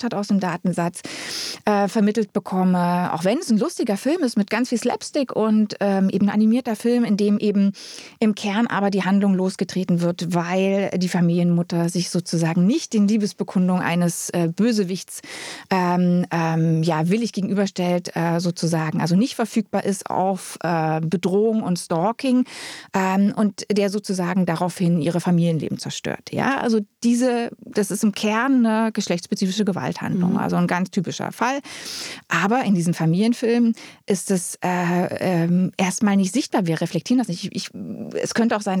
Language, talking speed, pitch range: German, 160 wpm, 175-215 Hz